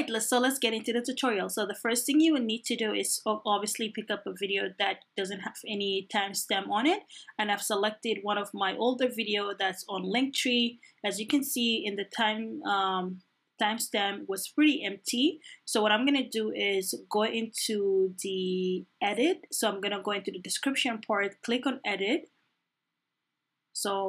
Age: 20-39